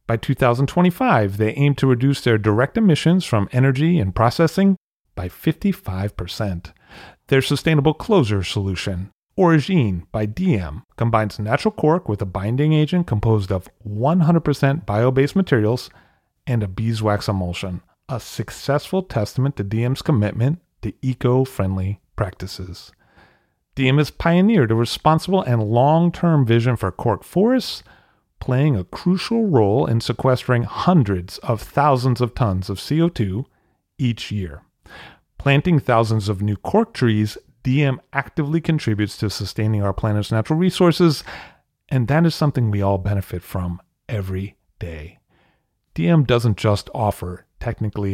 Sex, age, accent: male, 40-59, American